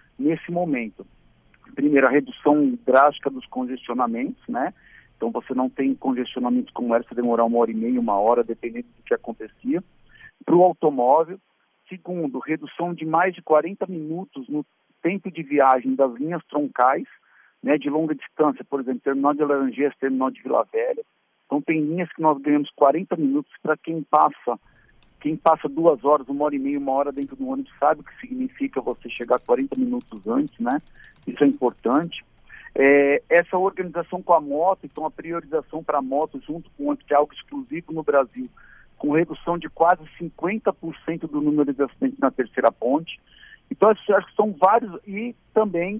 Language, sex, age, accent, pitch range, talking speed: Portuguese, male, 50-69, Brazilian, 140-185 Hz, 175 wpm